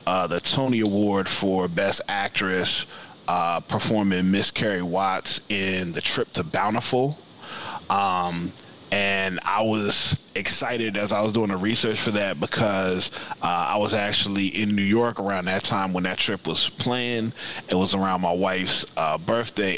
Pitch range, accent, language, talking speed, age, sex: 90-110 Hz, American, English, 160 wpm, 20-39, male